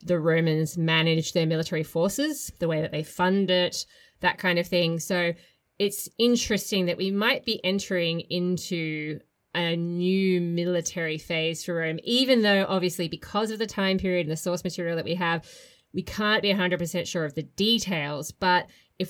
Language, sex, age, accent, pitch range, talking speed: English, female, 20-39, Australian, 160-190 Hz, 175 wpm